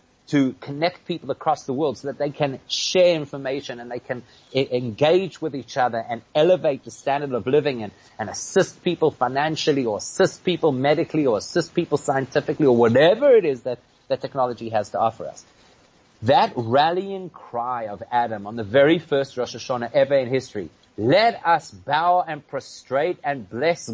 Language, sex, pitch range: English, male, 125-165 Hz